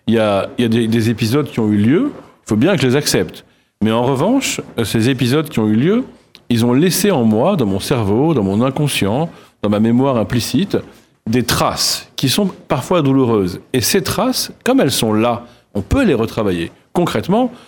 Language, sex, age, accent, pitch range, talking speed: French, male, 40-59, French, 110-160 Hz, 210 wpm